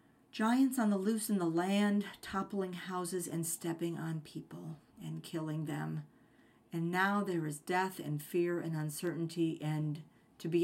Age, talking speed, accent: 50-69, 160 wpm, American